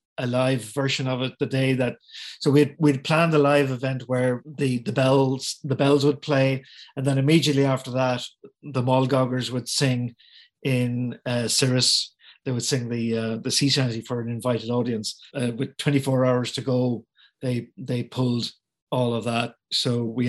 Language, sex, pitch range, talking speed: English, male, 125-140 Hz, 180 wpm